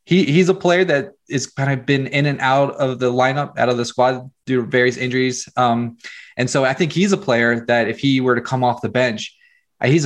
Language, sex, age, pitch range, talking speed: English, male, 20-39, 115-130 Hz, 245 wpm